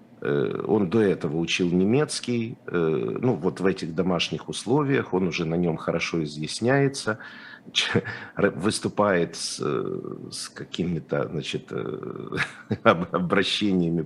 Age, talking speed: 50-69, 95 wpm